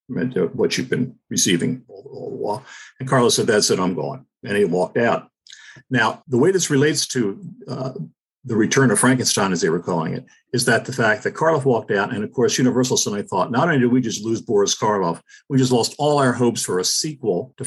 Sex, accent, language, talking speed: male, American, English, 230 wpm